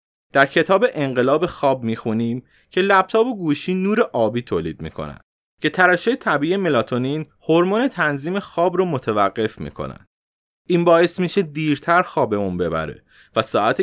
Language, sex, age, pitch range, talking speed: Persian, male, 20-39, 130-185 Hz, 135 wpm